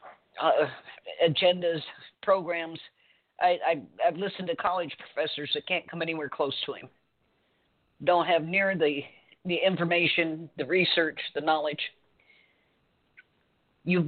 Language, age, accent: English, 50-69, American